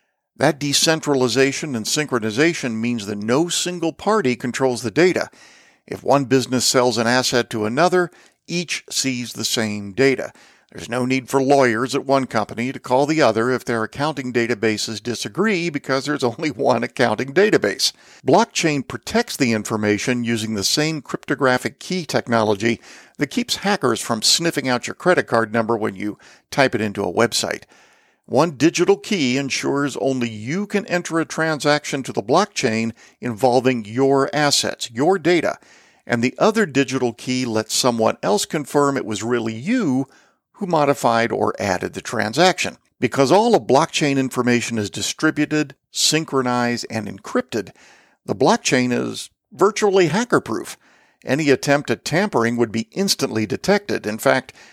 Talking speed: 150 wpm